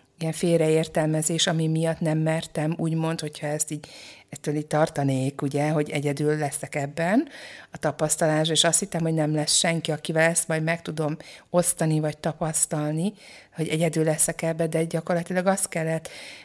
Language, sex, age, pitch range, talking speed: Hungarian, female, 50-69, 155-180 Hz, 155 wpm